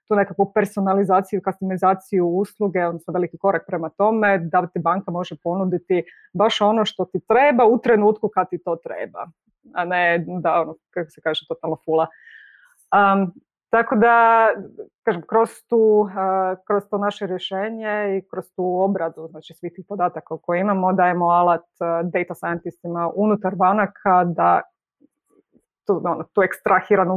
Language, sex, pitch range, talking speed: Croatian, female, 175-205 Hz, 145 wpm